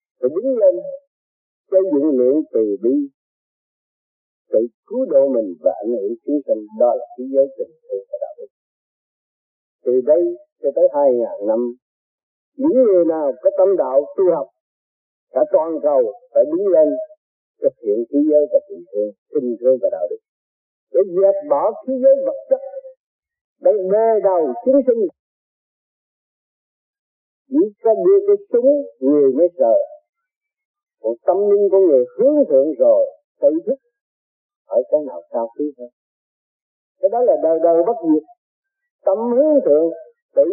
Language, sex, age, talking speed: Vietnamese, male, 50-69, 155 wpm